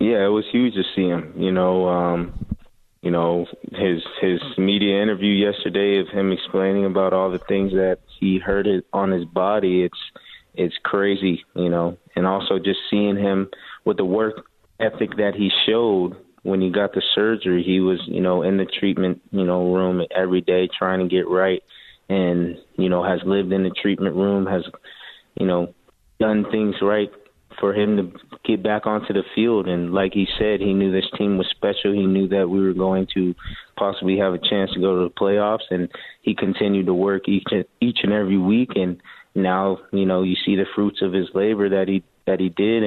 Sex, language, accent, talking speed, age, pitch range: male, English, American, 200 wpm, 20-39, 90-100 Hz